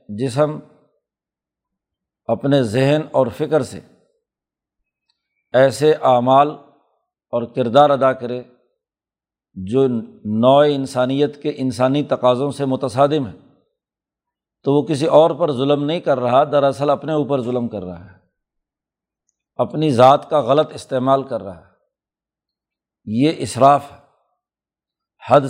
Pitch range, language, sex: 130-150 Hz, Urdu, male